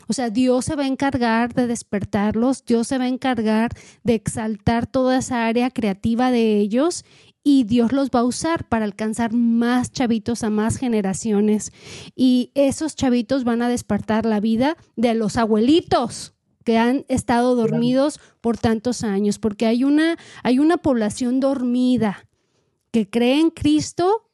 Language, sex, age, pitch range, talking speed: Spanish, female, 30-49, 230-275 Hz, 155 wpm